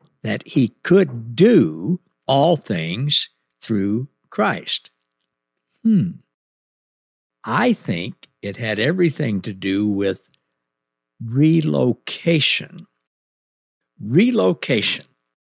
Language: English